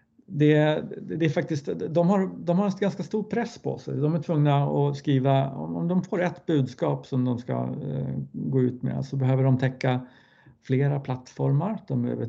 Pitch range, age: 130-150 Hz, 50-69